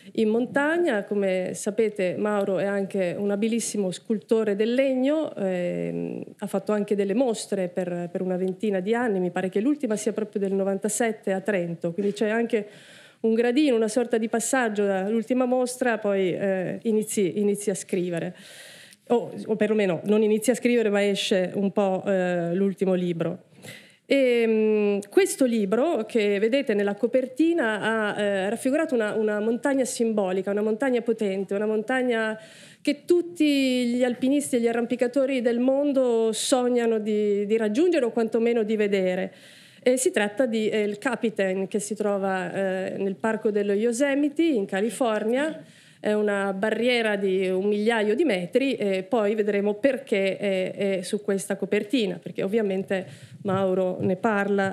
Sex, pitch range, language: female, 195-240 Hz, Italian